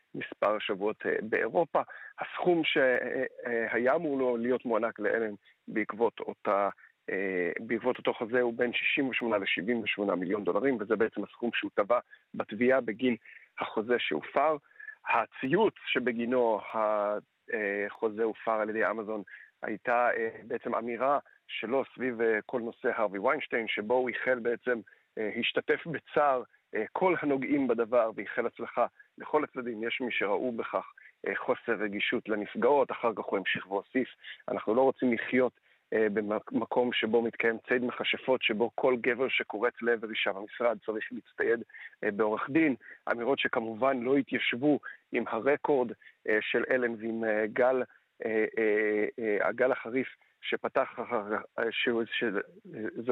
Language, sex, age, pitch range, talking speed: Hebrew, male, 50-69, 110-130 Hz, 120 wpm